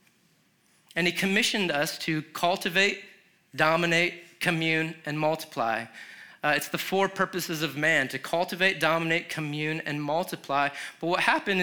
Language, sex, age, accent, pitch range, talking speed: English, male, 30-49, American, 155-190 Hz, 135 wpm